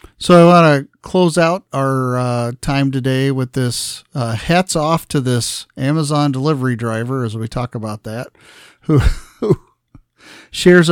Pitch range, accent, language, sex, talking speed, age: 120-145 Hz, American, English, male, 150 wpm, 50-69